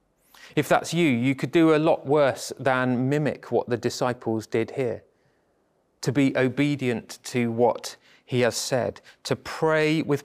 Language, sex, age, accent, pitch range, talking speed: English, male, 30-49, British, 120-150 Hz, 160 wpm